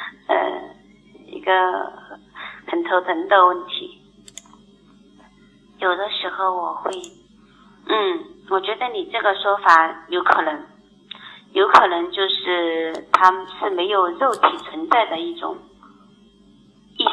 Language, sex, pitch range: Chinese, female, 170-205 Hz